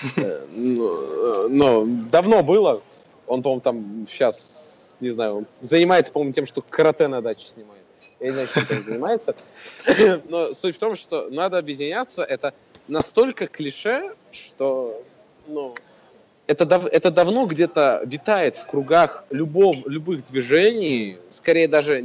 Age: 20-39